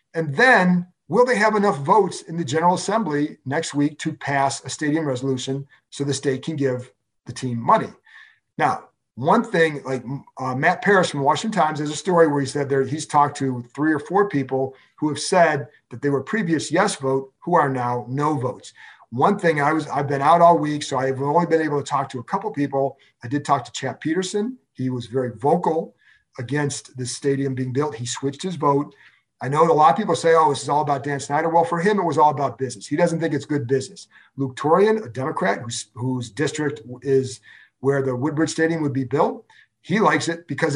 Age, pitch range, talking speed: 50-69, 135-165 Hz, 220 wpm